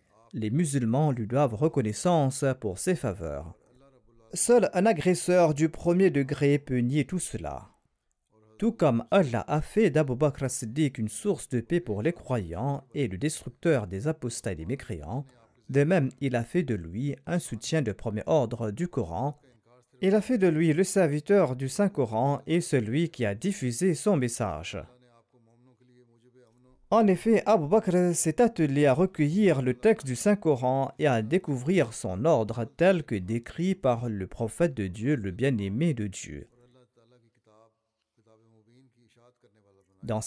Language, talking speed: French, 150 wpm